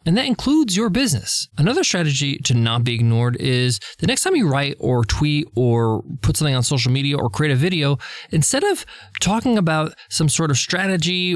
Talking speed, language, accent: 195 wpm, English, American